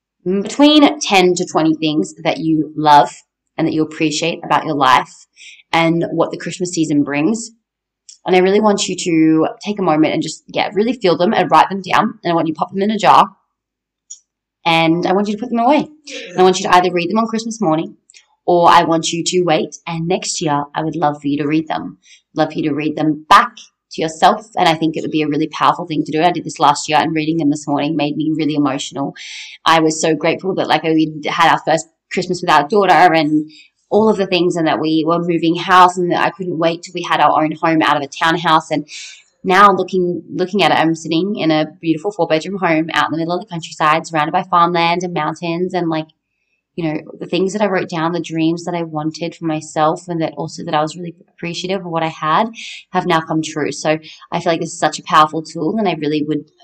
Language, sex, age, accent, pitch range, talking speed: English, female, 20-39, Australian, 155-185 Hz, 250 wpm